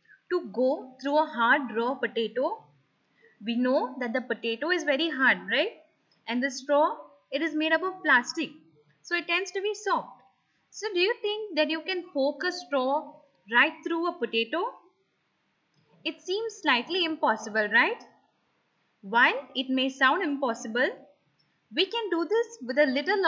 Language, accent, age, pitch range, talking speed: English, Indian, 20-39, 250-350 Hz, 160 wpm